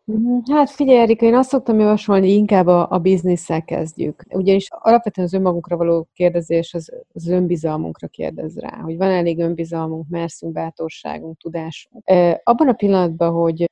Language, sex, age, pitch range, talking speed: Hungarian, female, 30-49, 165-185 Hz, 160 wpm